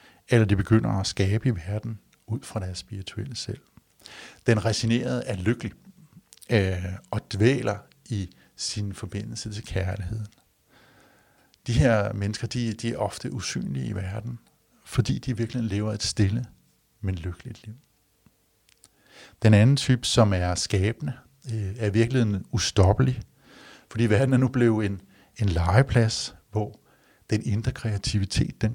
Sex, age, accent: male, 60-79, native